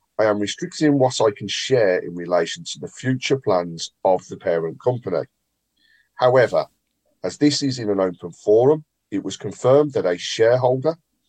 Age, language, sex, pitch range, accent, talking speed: 40-59, English, male, 95-140 Hz, British, 165 wpm